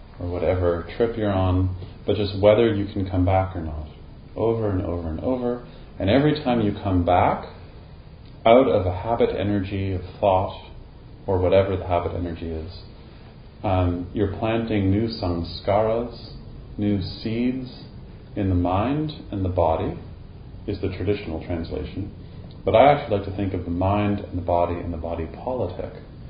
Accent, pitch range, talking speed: American, 90-105 Hz, 160 wpm